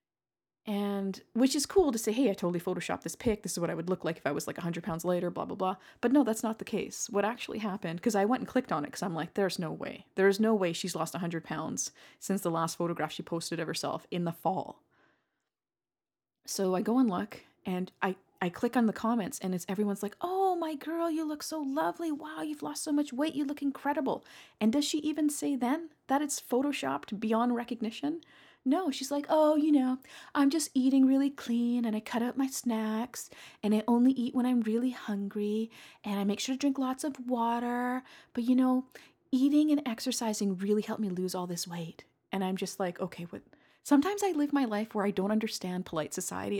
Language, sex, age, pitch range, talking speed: English, female, 30-49, 190-275 Hz, 225 wpm